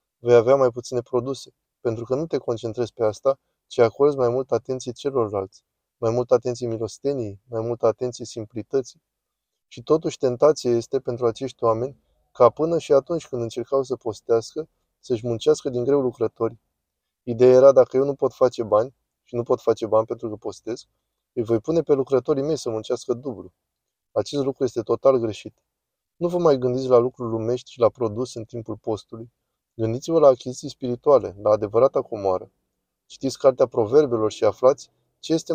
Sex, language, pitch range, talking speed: male, Romanian, 115-140 Hz, 175 wpm